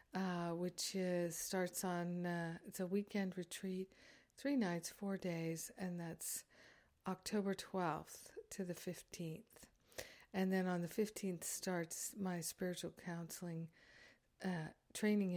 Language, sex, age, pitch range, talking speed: English, female, 50-69, 170-195 Hz, 125 wpm